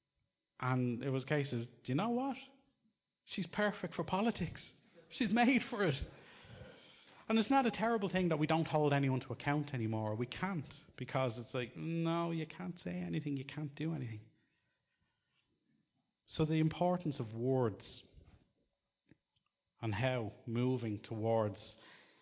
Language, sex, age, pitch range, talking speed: English, male, 30-49, 105-150 Hz, 150 wpm